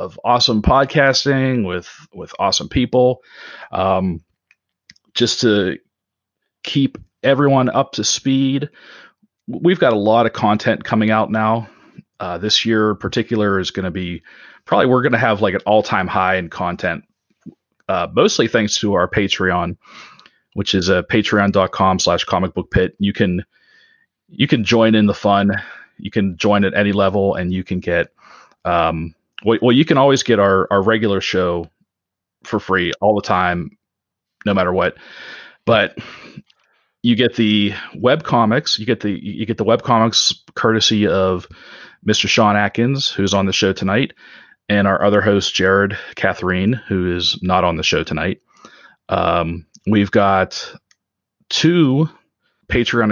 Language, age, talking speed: English, 30-49, 155 wpm